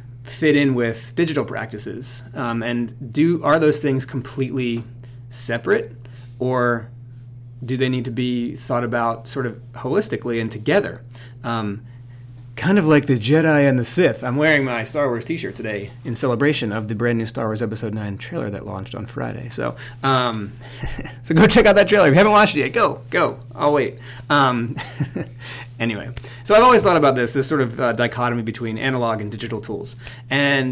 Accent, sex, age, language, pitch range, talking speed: American, male, 30-49, English, 115-135 Hz, 180 wpm